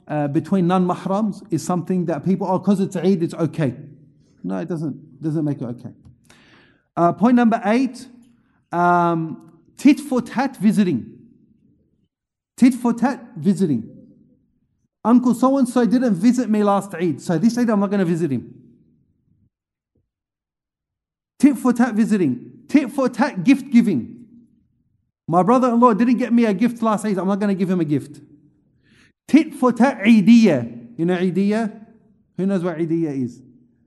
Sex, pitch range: male, 180-250 Hz